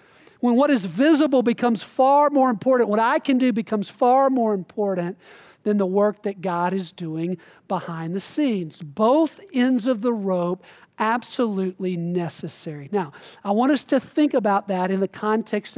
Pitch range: 185-265 Hz